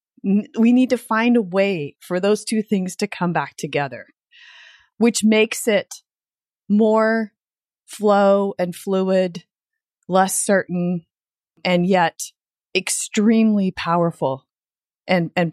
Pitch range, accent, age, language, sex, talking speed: 180-250 Hz, American, 30-49, English, female, 110 wpm